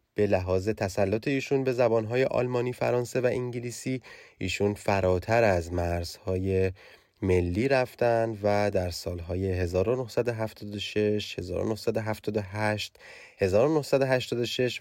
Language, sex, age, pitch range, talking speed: Persian, male, 30-49, 95-125 Hz, 90 wpm